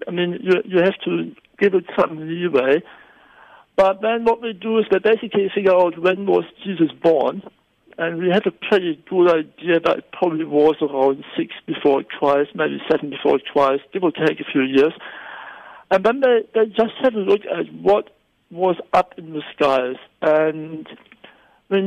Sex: male